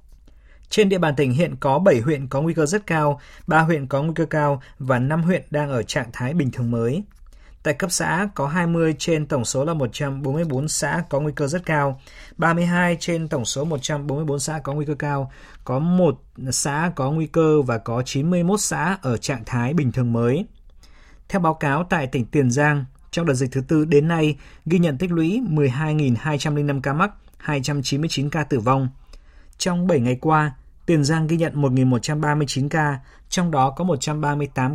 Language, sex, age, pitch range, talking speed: Vietnamese, male, 20-39, 130-165 Hz, 190 wpm